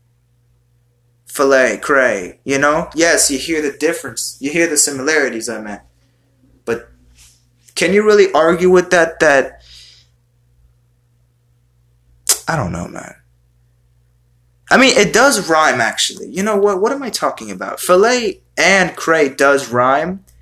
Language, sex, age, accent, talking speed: English, male, 20-39, American, 135 wpm